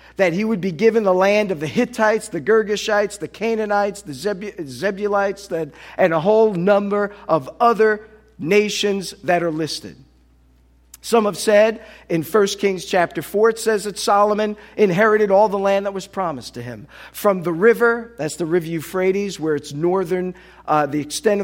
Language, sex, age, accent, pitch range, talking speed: English, male, 50-69, American, 155-210 Hz, 170 wpm